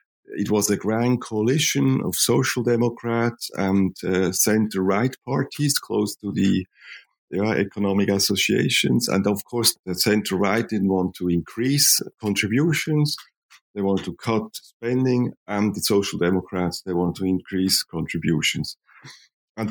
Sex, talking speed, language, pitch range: male, 135 wpm, English, 95-120 Hz